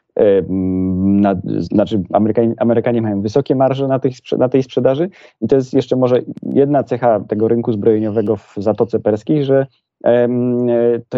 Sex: male